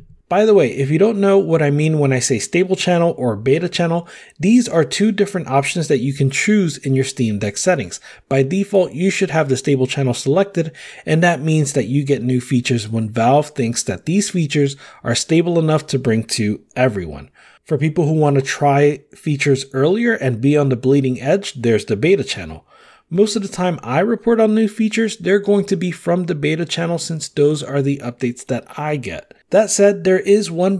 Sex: male